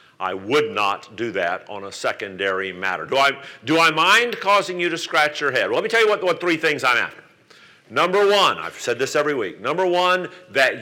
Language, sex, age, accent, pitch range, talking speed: English, male, 50-69, American, 145-190 Hz, 225 wpm